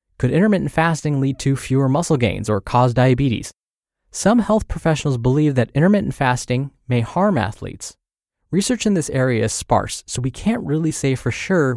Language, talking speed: English, 175 wpm